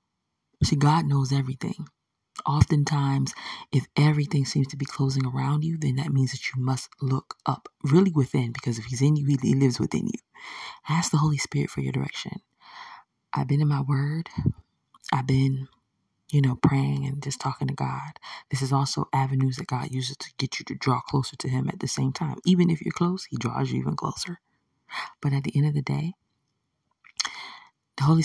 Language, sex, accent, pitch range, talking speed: English, female, American, 135-155 Hz, 190 wpm